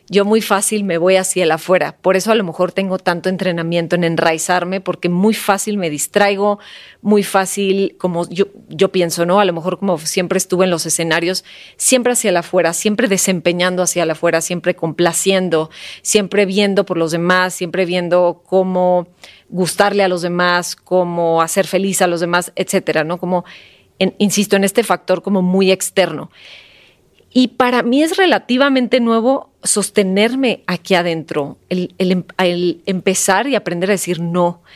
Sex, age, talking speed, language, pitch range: female, 30-49, 165 wpm, Spanish, 175-205 Hz